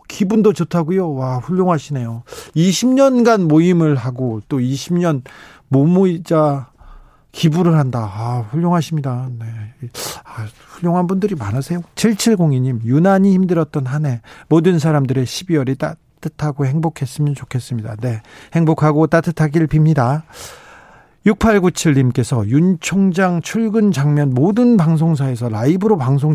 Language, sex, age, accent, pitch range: Korean, male, 40-59, native, 130-175 Hz